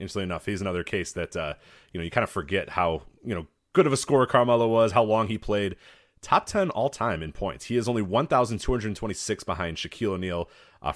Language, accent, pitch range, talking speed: English, American, 85-120 Hz, 245 wpm